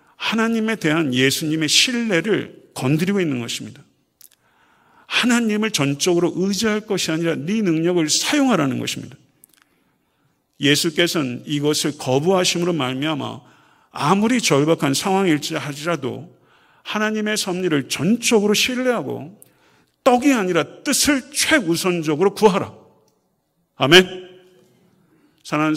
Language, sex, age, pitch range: Korean, male, 50-69, 135-180 Hz